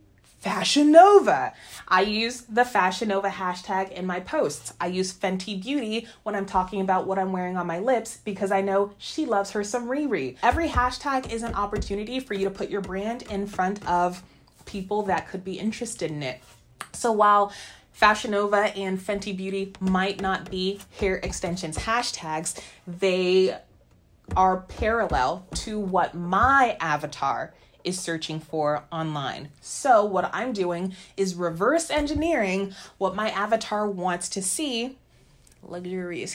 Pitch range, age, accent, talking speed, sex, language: 180-220 Hz, 20-39, American, 155 wpm, female, English